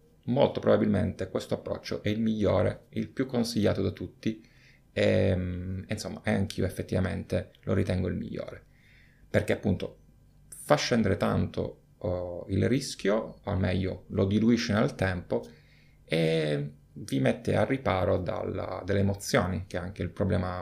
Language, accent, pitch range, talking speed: Italian, native, 95-120 Hz, 135 wpm